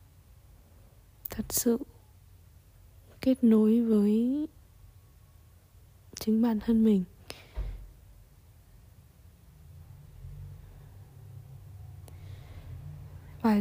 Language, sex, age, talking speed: Vietnamese, female, 20-39, 45 wpm